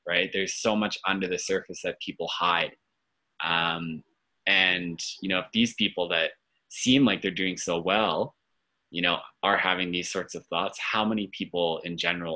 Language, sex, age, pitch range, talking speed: English, male, 20-39, 85-105 Hz, 180 wpm